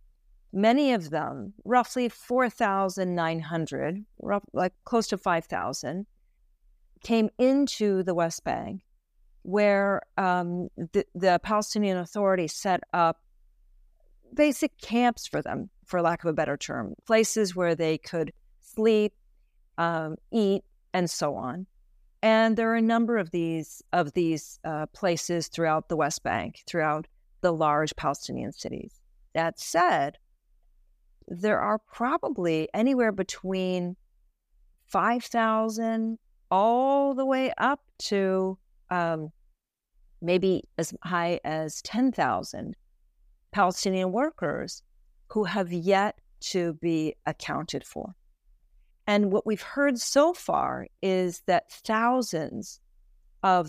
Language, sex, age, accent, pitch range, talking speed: English, female, 40-59, American, 165-220 Hz, 115 wpm